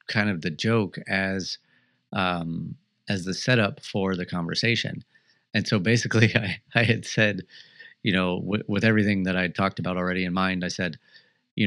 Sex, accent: male, American